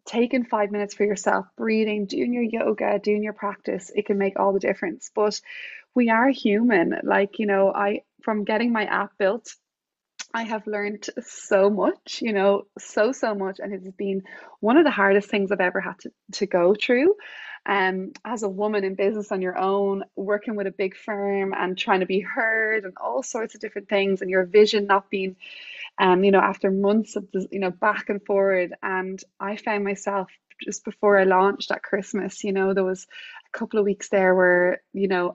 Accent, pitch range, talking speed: Irish, 195-225 Hz, 205 wpm